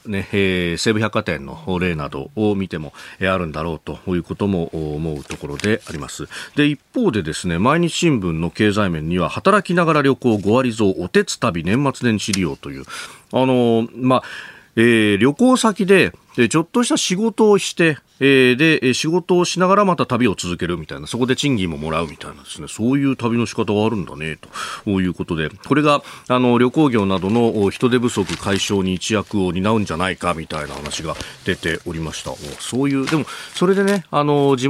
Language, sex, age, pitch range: Japanese, male, 40-59, 90-140 Hz